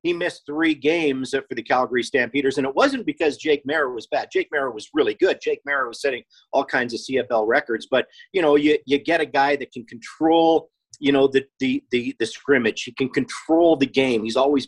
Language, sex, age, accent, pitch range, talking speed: English, male, 40-59, American, 135-215 Hz, 225 wpm